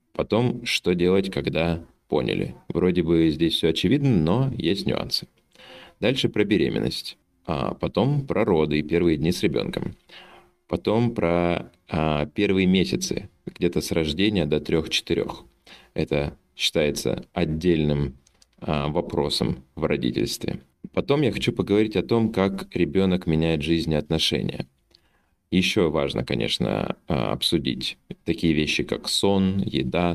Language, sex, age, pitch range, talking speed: Russian, male, 30-49, 80-105 Hz, 125 wpm